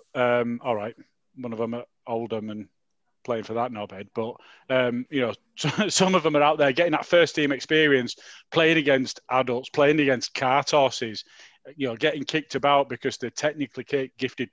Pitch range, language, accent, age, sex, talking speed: 120-140 Hz, English, British, 30-49, male, 190 wpm